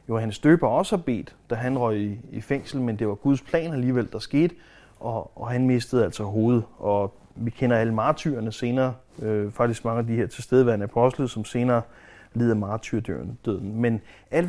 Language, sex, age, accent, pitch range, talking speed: Danish, male, 30-49, native, 110-150 Hz, 185 wpm